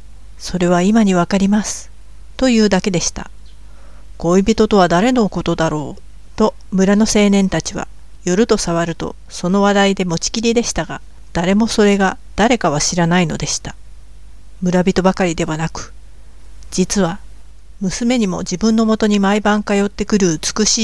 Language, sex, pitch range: Japanese, female, 170-200 Hz